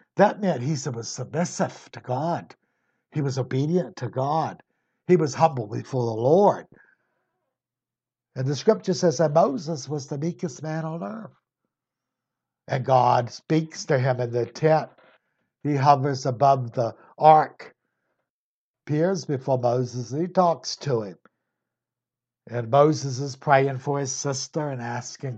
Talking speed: 140 wpm